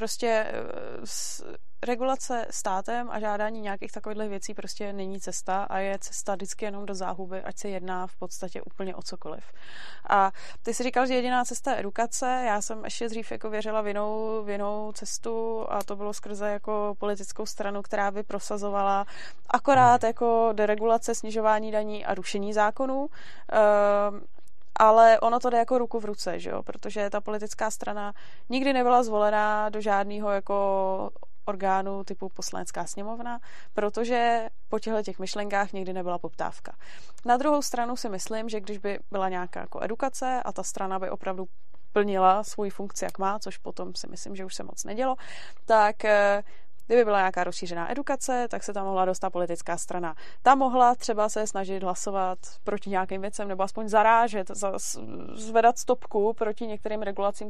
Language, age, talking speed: Czech, 20-39, 165 wpm